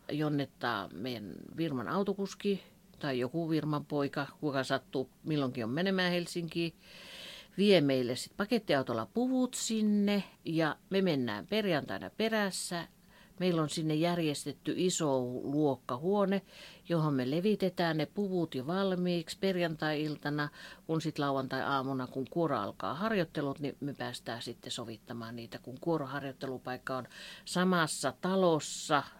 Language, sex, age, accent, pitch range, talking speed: Finnish, female, 50-69, native, 135-180 Hz, 115 wpm